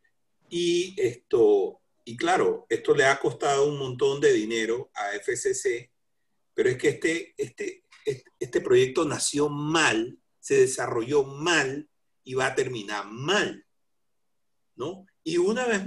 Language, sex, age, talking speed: Spanish, male, 50-69, 130 wpm